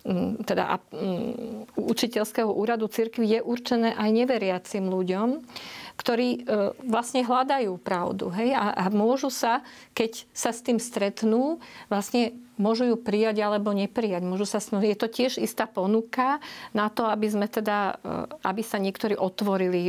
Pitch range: 195-235 Hz